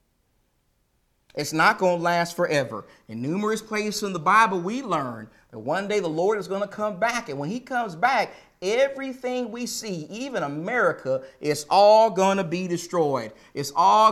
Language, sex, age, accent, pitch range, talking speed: English, male, 40-59, American, 135-210 Hz, 180 wpm